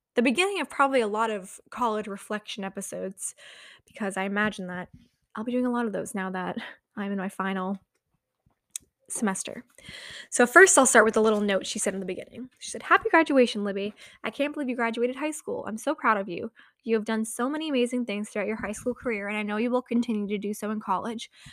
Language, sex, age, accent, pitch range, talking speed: English, female, 10-29, American, 205-250 Hz, 225 wpm